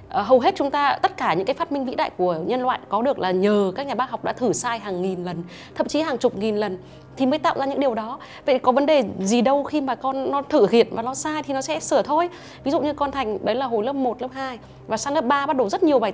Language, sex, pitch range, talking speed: Vietnamese, female, 220-280 Hz, 310 wpm